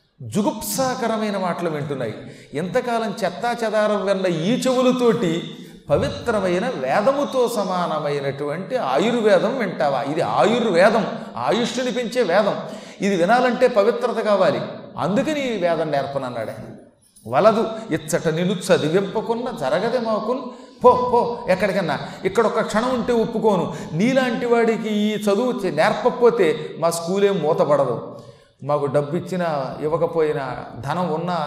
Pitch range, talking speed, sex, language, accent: 160-225 Hz, 95 wpm, male, Telugu, native